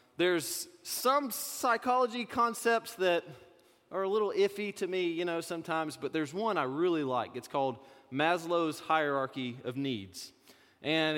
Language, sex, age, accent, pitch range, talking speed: English, male, 30-49, American, 155-220 Hz, 145 wpm